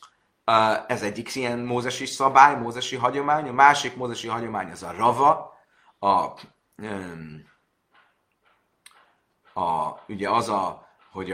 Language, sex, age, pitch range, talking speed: Hungarian, male, 30-49, 110-130 Hz, 105 wpm